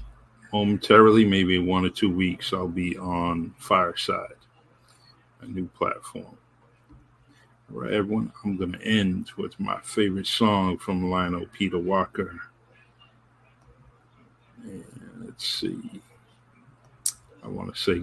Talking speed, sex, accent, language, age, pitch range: 115 wpm, male, American, English, 50-69, 90-105 Hz